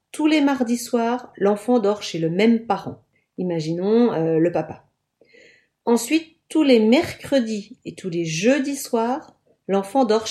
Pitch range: 190-265 Hz